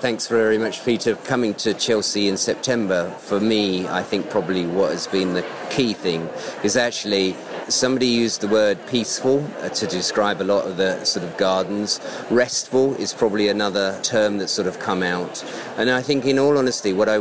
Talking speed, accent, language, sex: 190 wpm, British, English, male